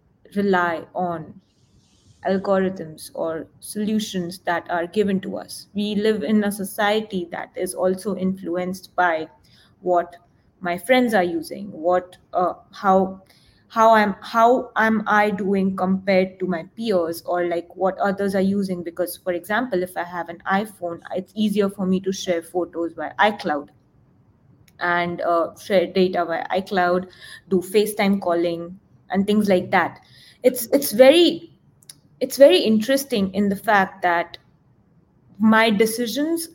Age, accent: 20-39, Indian